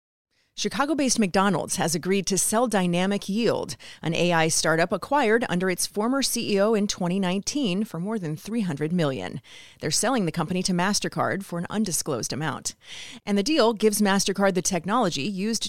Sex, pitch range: female, 165-215 Hz